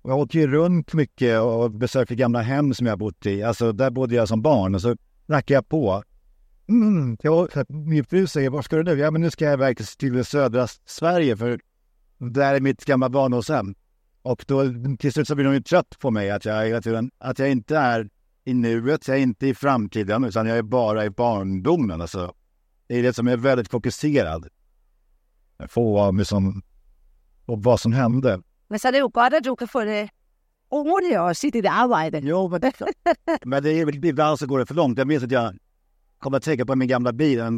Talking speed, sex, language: 210 wpm, male, Danish